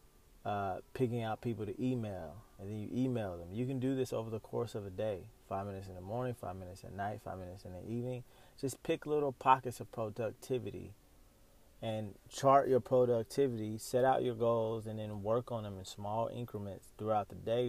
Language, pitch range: English, 95-120 Hz